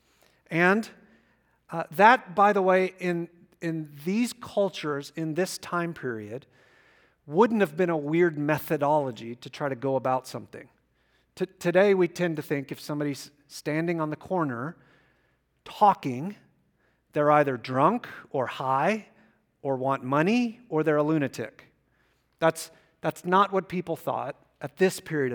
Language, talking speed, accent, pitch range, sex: English, 140 wpm, American, 145-190 Hz, male